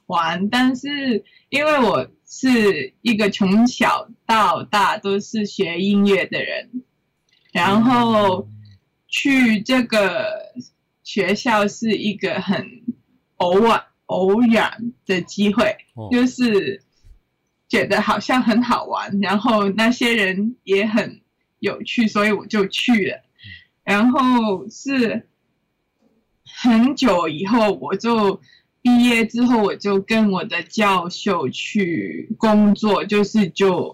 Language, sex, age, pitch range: Chinese, female, 20-39, 195-230 Hz